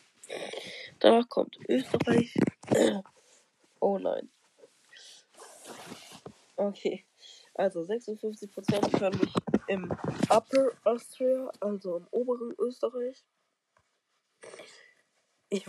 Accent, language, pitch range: German, German, 190-240 Hz